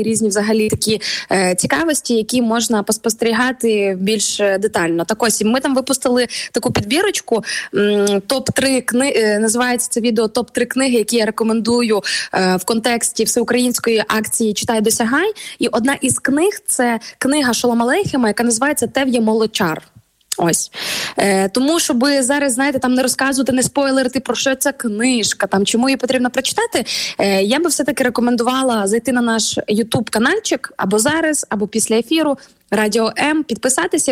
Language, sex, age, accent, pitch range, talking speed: Ukrainian, female, 20-39, native, 220-270 Hz, 150 wpm